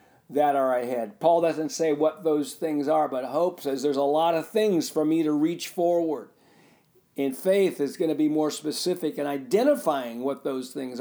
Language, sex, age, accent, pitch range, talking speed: English, male, 50-69, American, 140-170 Hz, 195 wpm